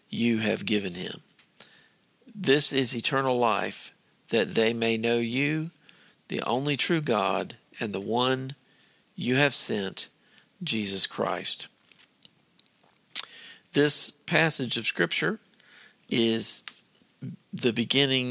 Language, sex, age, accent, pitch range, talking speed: English, male, 50-69, American, 115-130 Hz, 105 wpm